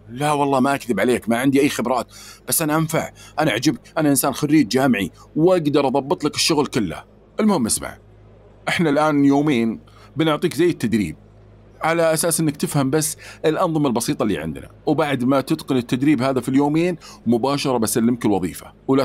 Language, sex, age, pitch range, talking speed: Arabic, male, 40-59, 115-155 Hz, 160 wpm